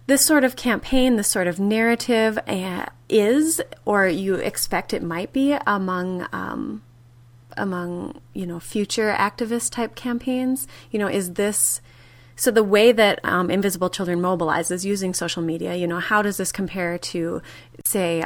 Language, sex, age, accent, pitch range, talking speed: English, female, 30-49, American, 170-205 Hz, 150 wpm